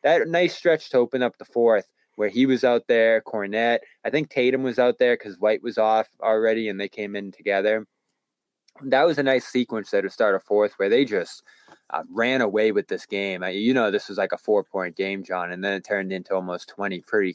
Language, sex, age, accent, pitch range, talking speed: English, male, 20-39, American, 100-130 Hz, 230 wpm